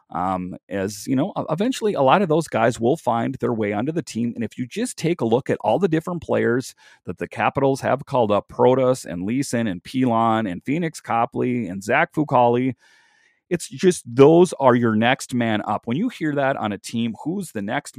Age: 40-59